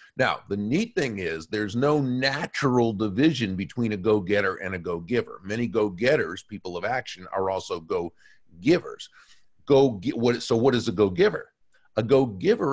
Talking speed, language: 180 wpm, English